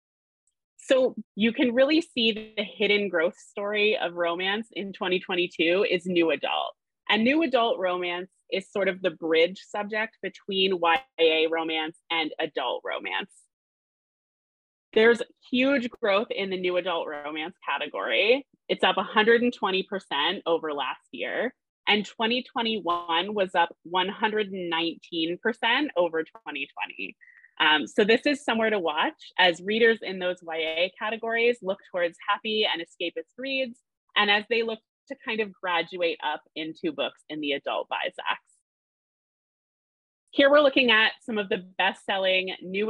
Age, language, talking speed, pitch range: 20-39, English, 135 wpm, 175-230 Hz